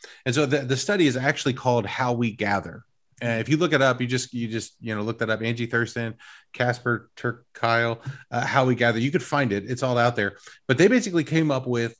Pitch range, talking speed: 115-140 Hz, 250 wpm